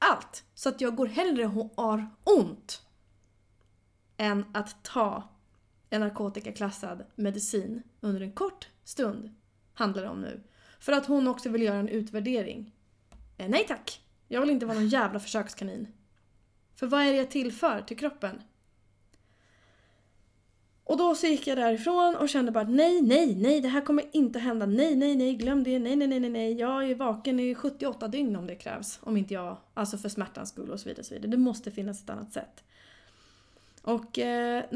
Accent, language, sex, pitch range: native, Swedish, female, 200-260 Hz